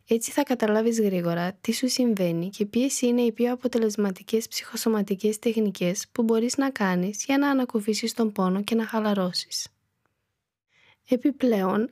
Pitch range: 200-235 Hz